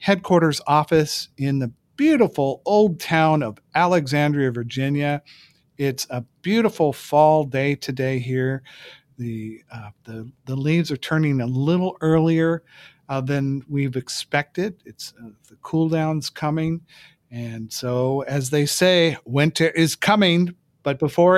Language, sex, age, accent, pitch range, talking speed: English, male, 50-69, American, 135-170 Hz, 130 wpm